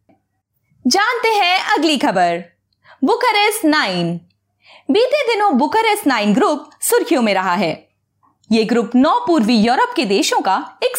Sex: female